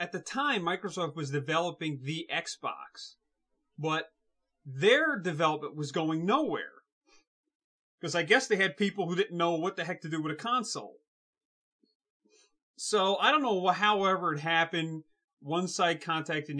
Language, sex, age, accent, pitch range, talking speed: English, male, 30-49, American, 155-240 Hz, 150 wpm